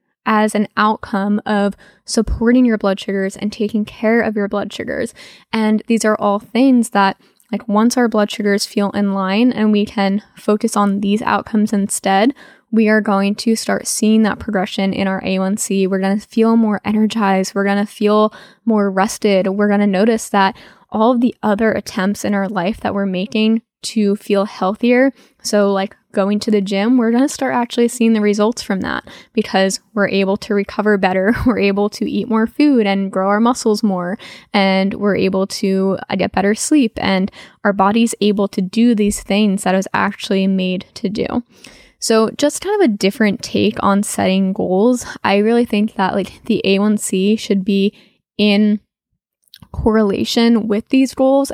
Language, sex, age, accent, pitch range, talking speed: English, female, 10-29, American, 195-225 Hz, 185 wpm